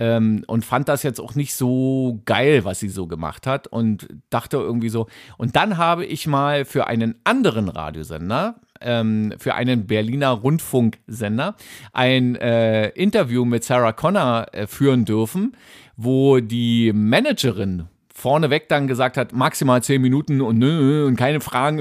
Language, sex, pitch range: German, male, 115-145 Hz